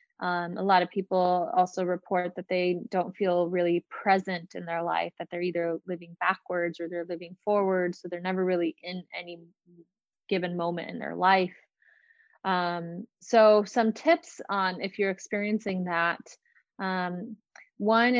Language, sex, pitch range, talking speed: English, female, 180-205 Hz, 155 wpm